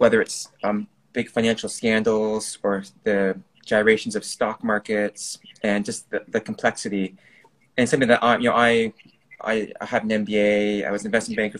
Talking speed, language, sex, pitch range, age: 170 wpm, English, male, 100-120 Hz, 20-39